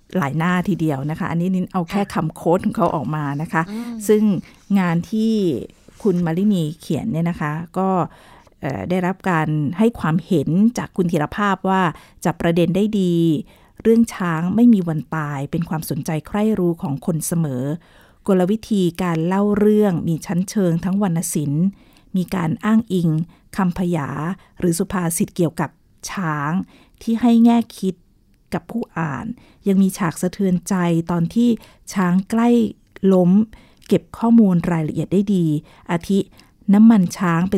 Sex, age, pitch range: female, 50-69, 165-205 Hz